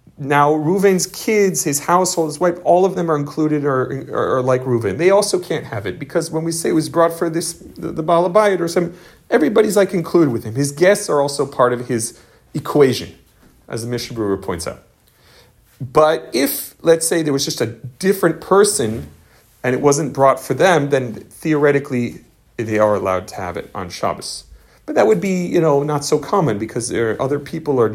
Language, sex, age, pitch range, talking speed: English, male, 40-59, 115-160 Hz, 205 wpm